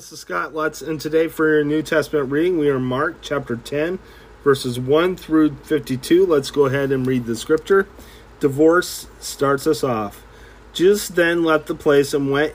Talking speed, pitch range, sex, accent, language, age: 185 wpm, 125-155 Hz, male, American, English, 40-59